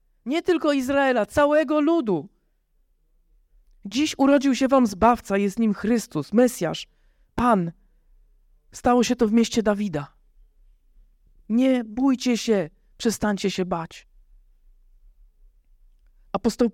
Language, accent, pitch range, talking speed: Polish, native, 200-255 Hz, 100 wpm